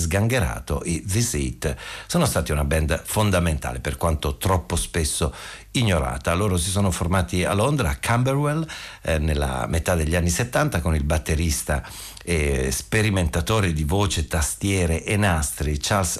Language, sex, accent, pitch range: Italian, male, native, 80-100 Hz